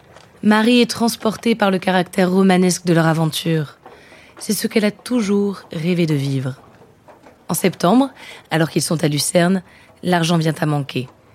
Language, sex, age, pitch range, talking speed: French, female, 20-39, 150-195 Hz, 155 wpm